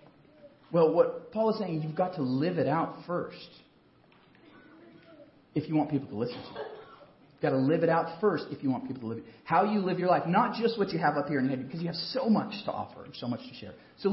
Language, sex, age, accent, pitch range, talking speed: English, male, 40-59, American, 150-220 Hz, 260 wpm